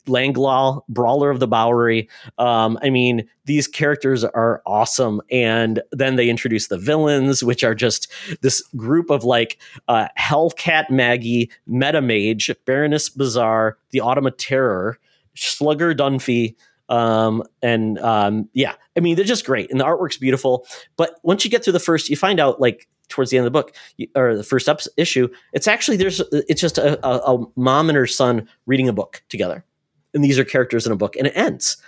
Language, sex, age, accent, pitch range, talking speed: English, male, 30-49, American, 110-145 Hz, 185 wpm